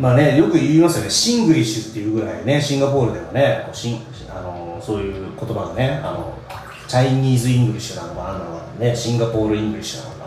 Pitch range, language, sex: 110-160 Hz, Japanese, male